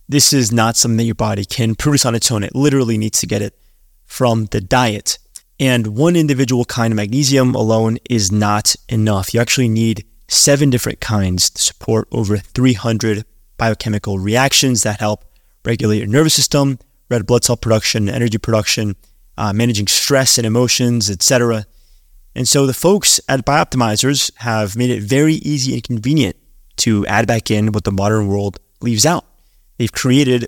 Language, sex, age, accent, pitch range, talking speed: English, male, 20-39, American, 105-125 Hz, 170 wpm